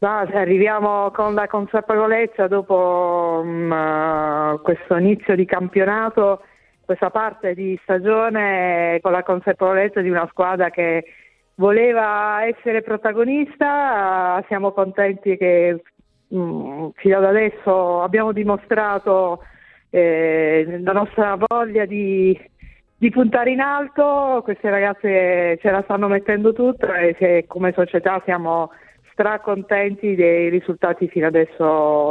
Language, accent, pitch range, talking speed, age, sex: Italian, native, 175-210 Hz, 115 wpm, 50-69, female